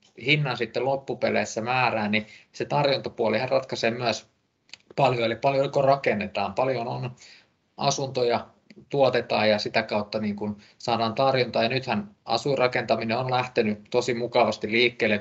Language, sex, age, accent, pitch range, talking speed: Finnish, male, 20-39, native, 105-125 Hz, 125 wpm